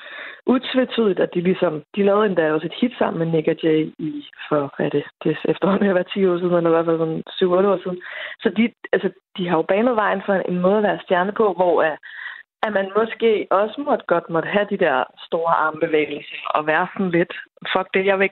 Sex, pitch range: female, 175-215 Hz